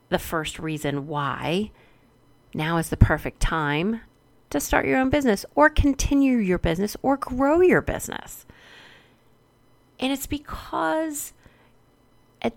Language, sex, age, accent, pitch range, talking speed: English, female, 30-49, American, 150-220 Hz, 125 wpm